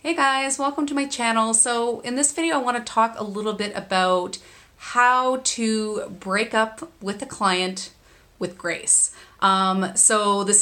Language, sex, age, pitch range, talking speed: English, female, 30-49, 180-230 Hz, 170 wpm